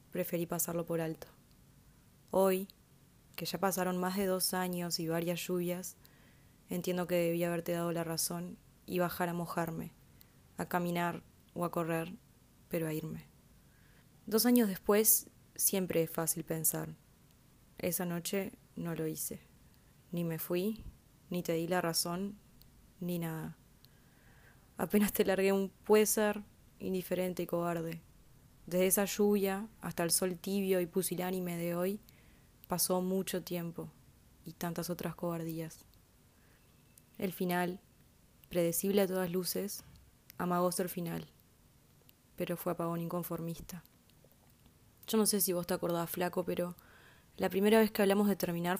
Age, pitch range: 20-39, 170-195 Hz